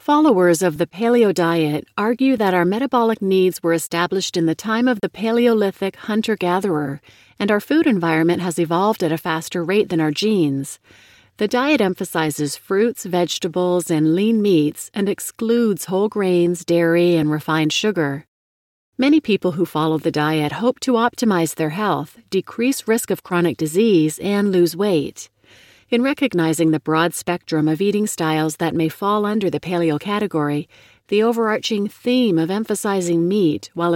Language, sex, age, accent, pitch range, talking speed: English, female, 40-59, American, 160-210 Hz, 155 wpm